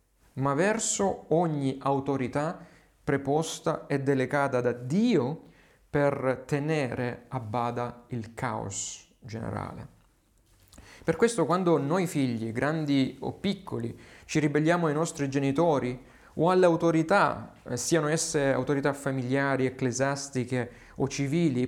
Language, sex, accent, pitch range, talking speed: Italian, male, native, 125-160 Hz, 110 wpm